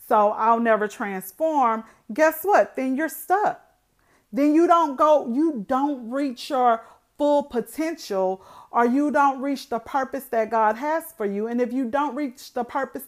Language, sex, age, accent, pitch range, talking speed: English, female, 40-59, American, 215-275 Hz, 170 wpm